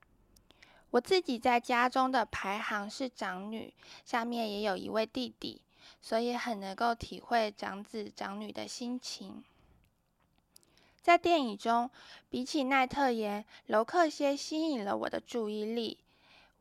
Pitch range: 205-255 Hz